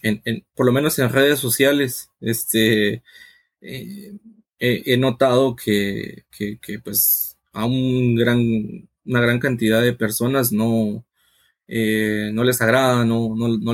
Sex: male